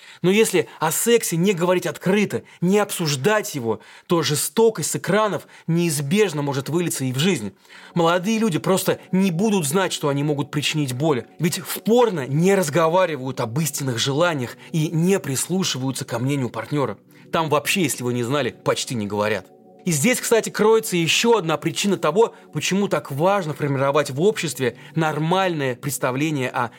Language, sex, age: Russian, male, 30-49